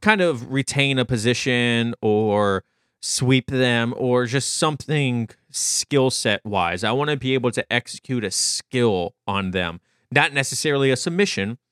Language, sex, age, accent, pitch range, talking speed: English, male, 30-49, American, 110-140 Hz, 150 wpm